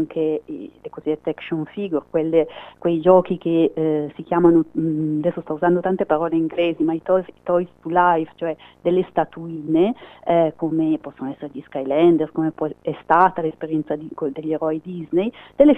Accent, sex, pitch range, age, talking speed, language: native, female, 155-180 Hz, 40-59, 165 wpm, Italian